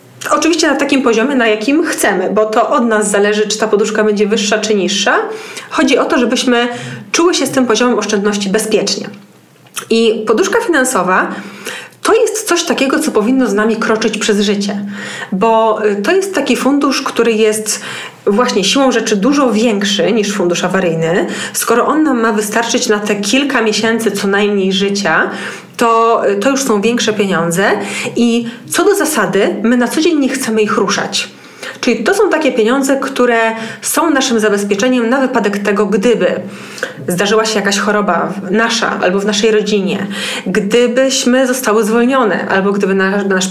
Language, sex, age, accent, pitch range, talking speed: Polish, female, 30-49, native, 205-245 Hz, 165 wpm